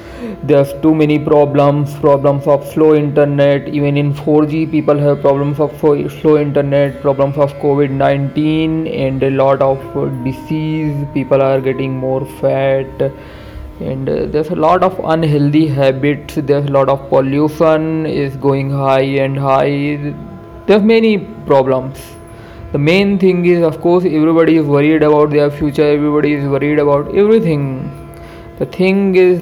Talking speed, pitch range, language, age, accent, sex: 145 wpm, 140-170 Hz, Hindi, 20-39, native, male